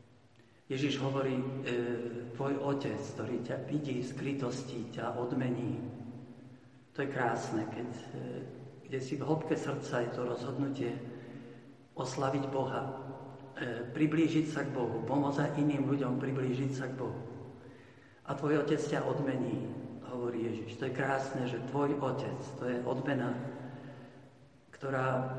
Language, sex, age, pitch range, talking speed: Slovak, male, 50-69, 125-140 Hz, 130 wpm